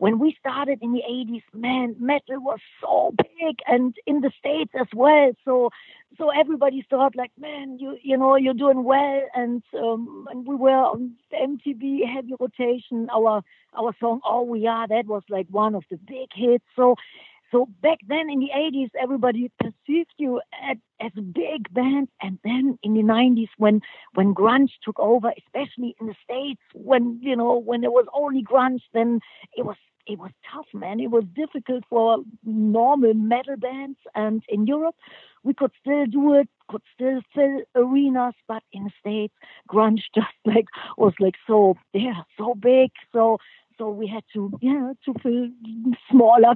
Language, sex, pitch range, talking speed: English, female, 225-270 Hz, 180 wpm